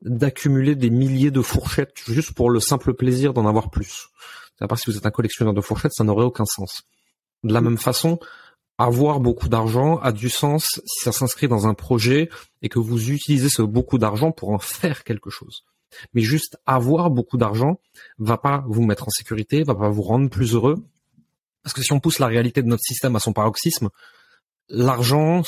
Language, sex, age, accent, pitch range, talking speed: French, male, 30-49, French, 115-140 Hz, 200 wpm